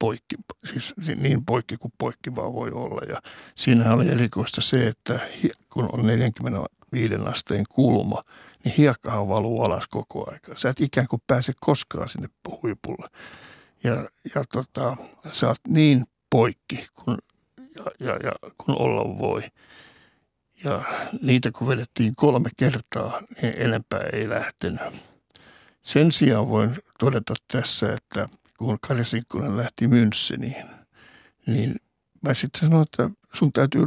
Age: 60-79